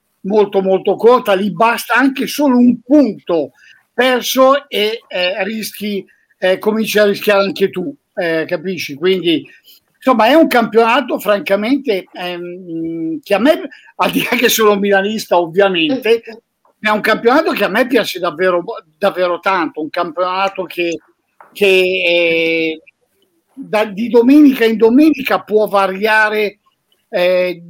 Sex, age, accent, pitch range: male, 50-69, native, 185-235 Hz